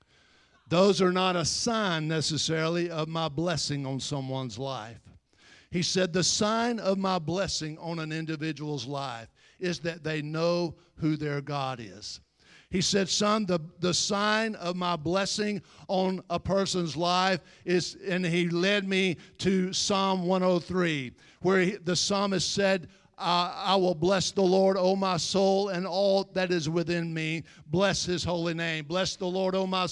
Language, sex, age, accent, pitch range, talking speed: English, male, 50-69, American, 160-195 Hz, 160 wpm